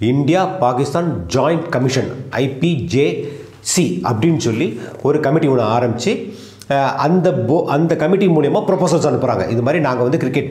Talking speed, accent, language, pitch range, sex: 130 wpm, native, Tamil, 120-170 Hz, male